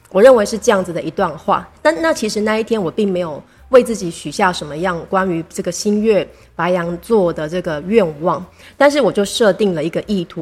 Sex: female